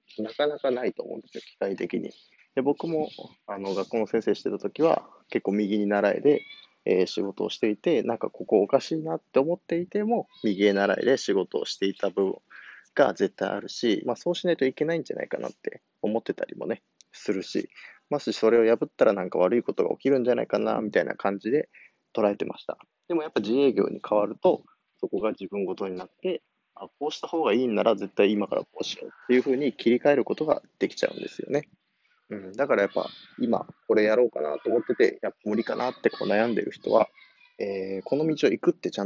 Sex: male